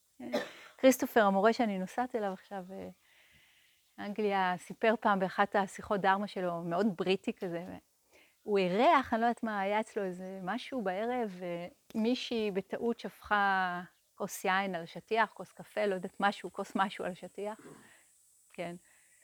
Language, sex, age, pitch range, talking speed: Hebrew, female, 30-49, 200-260 Hz, 135 wpm